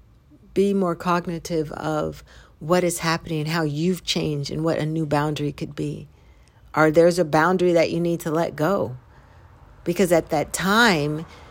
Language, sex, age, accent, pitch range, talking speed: English, female, 50-69, American, 150-180 Hz, 165 wpm